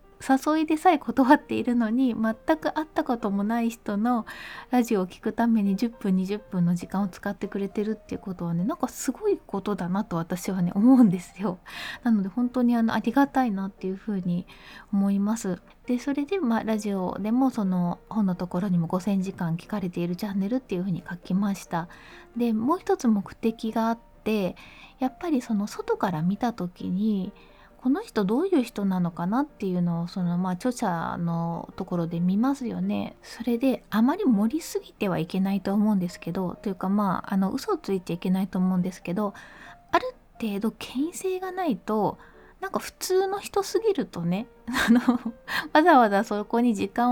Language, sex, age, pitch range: Japanese, female, 20-39, 190-250 Hz